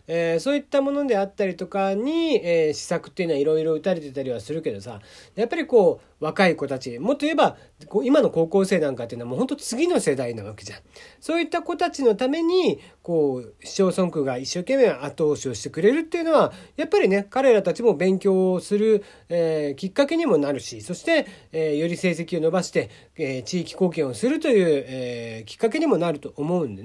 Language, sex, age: Japanese, male, 40-59